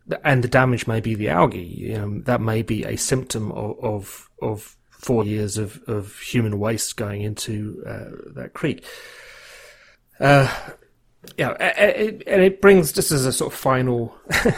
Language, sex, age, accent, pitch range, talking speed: English, male, 30-49, British, 110-135 Hz, 170 wpm